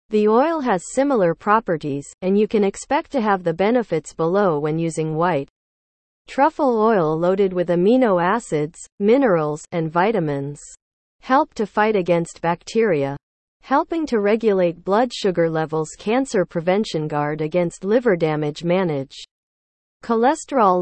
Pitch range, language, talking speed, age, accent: 160-225 Hz, English, 130 wpm, 40-59, American